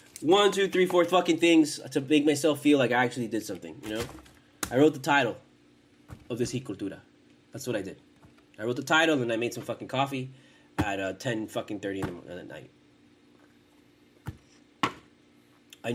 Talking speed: 190 wpm